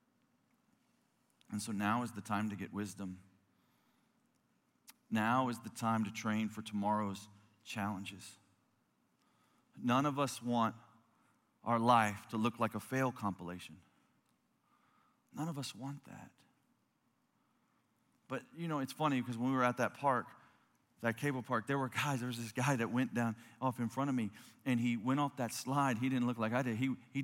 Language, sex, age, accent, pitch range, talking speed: English, male, 40-59, American, 110-130 Hz, 175 wpm